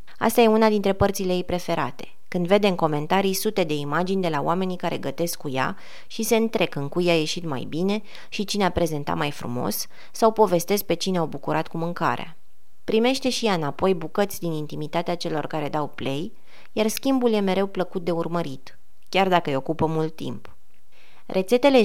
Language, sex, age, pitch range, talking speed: Romanian, female, 20-39, 155-195 Hz, 190 wpm